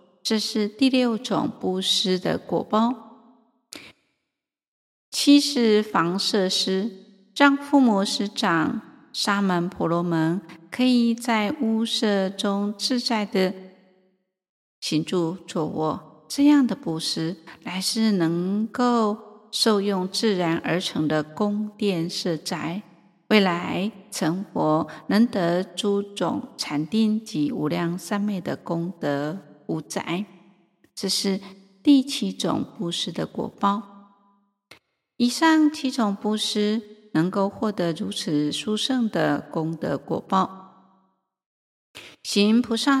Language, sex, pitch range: Chinese, female, 180-225 Hz